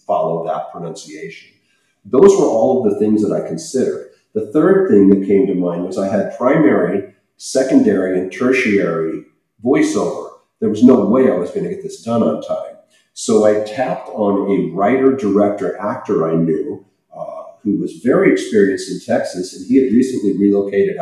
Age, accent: 50-69, American